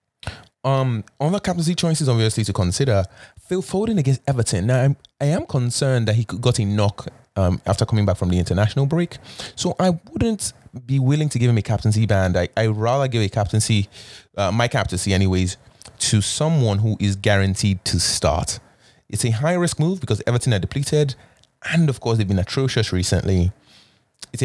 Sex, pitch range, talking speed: male, 100-130 Hz, 180 wpm